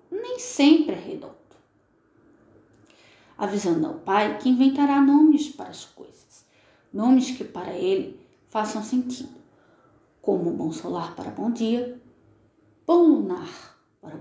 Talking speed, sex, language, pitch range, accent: 120 wpm, female, Portuguese, 230-355 Hz, Brazilian